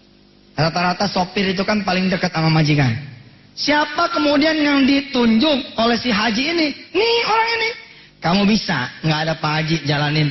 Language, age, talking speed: Indonesian, 30-49, 150 wpm